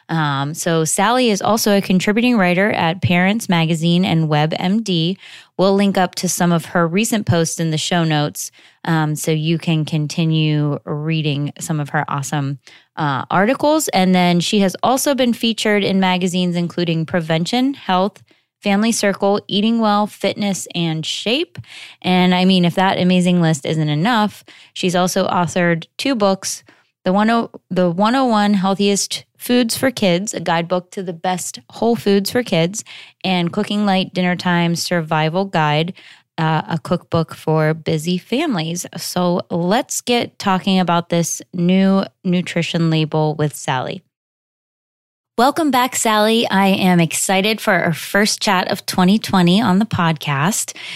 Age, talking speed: 20-39, 145 wpm